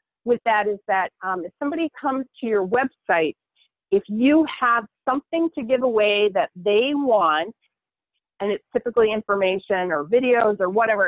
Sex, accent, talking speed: female, American, 155 wpm